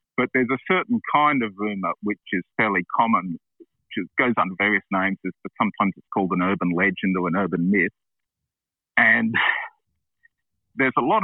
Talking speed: 165 wpm